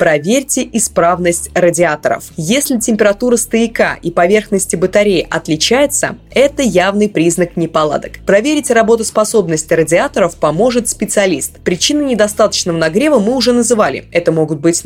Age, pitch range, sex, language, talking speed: 20-39, 165-240 Hz, female, Russian, 115 wpm